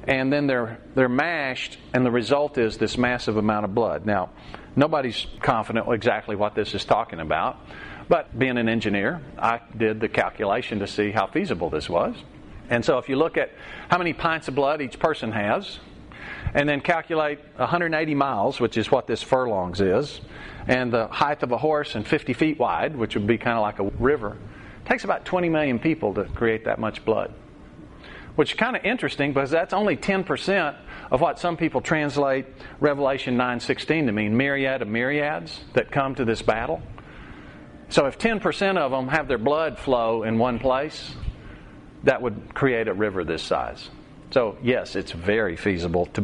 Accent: American